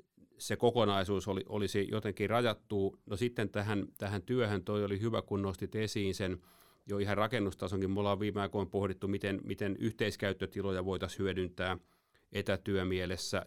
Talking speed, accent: 145 wpm, native